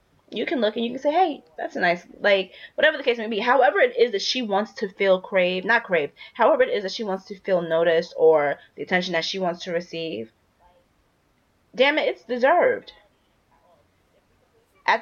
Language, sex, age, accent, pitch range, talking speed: English, female, 20-39, American, 170-230 Hz, 200 wpm